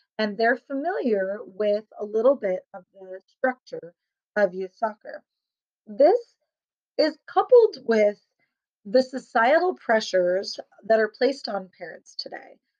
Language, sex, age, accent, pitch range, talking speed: English, female, 30-49, American, 205-260 Hz, 120 wpm